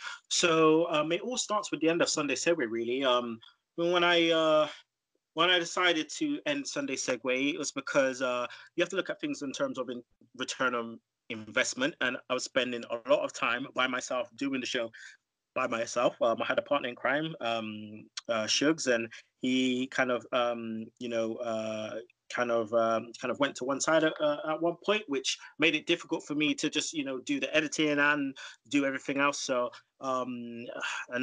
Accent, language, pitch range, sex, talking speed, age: British, English, 120-165 Hz, male, 205 wpm, 20-39